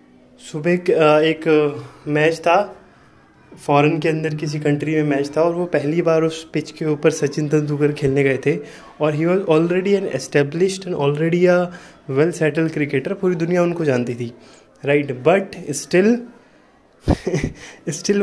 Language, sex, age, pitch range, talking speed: Hindi, male, 20-39, 150-190 Hz, 150 wpm